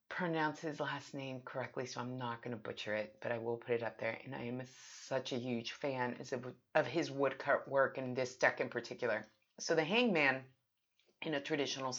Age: 30-49